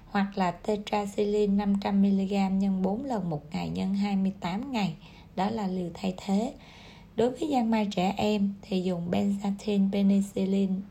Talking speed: 155 wpm